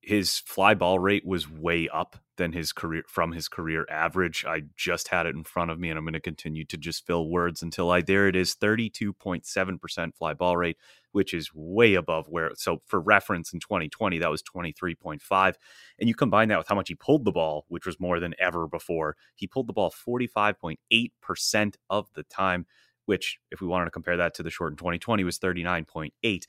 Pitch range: 85-100 Hz